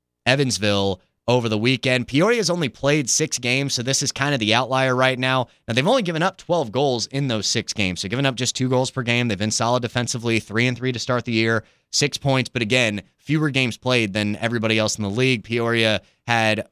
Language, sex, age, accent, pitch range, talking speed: English, male, 20-39, American, 105-130 Hz, 230 wpm